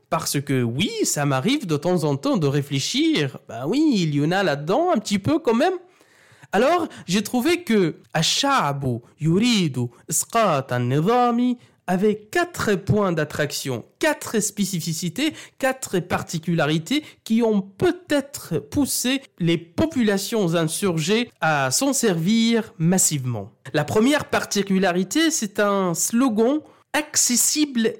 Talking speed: 115 wpm